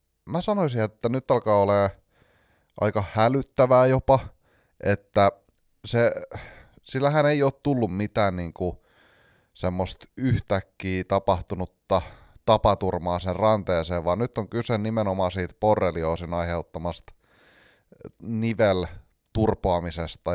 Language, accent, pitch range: Finnish, native, 90-115 Hz